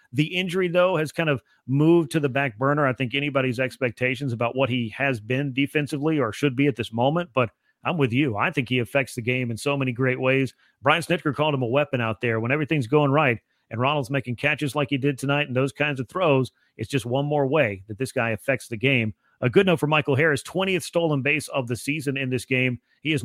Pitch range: 125-150 Hz